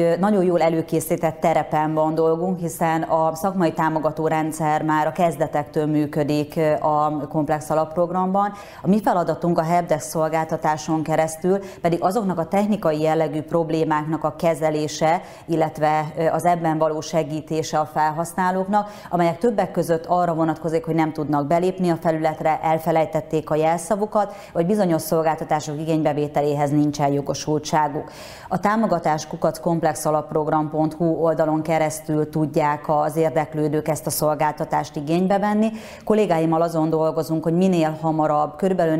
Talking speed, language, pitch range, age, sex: 125 wpm, Hungarian, 155-175 Hz, 30-49, female